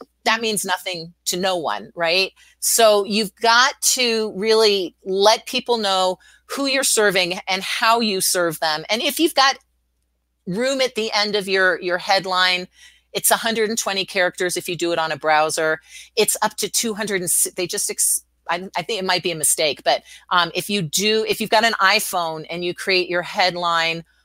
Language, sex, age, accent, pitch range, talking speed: English, female, 40-59, American, 175-220 Hz, 190 wpm